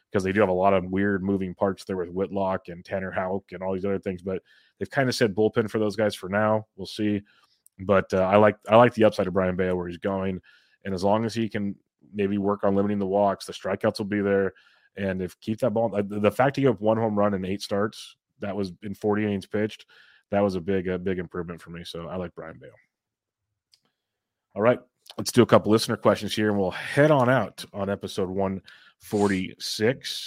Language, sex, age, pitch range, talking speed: English, male, 30-49, 95-110 Hz, 235 wpm